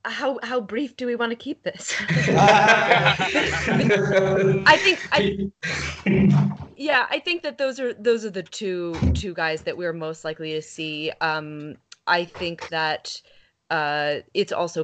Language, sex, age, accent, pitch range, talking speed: English, female, 20-39, American, 150-185 Hz, 150 wpm